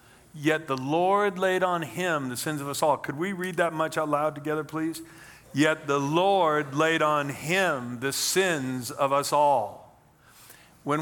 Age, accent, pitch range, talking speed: 50-69, American, 135-170 Hz, 175 wpm